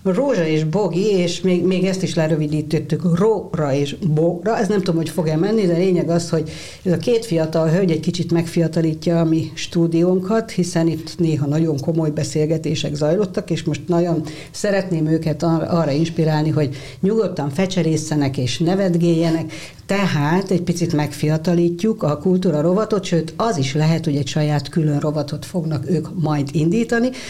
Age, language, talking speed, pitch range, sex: 60-79, Hungarian, 160 wpm, 150-180 Hz, female